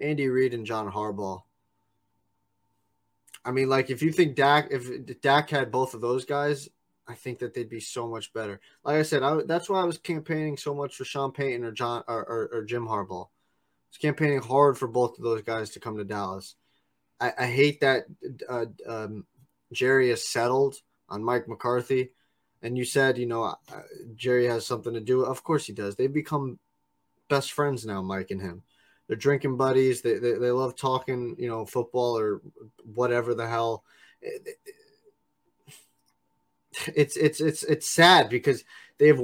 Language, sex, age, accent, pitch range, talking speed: English, male, 20-39, American, 115-150 Hz, 180 wpm